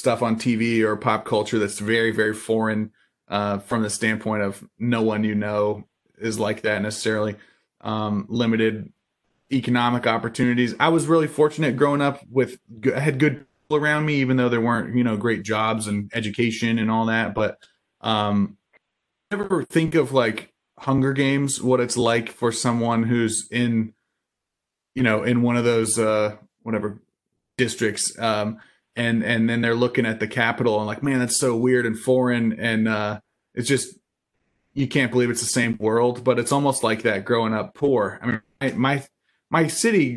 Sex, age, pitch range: male, 20-39, 110-130 Hz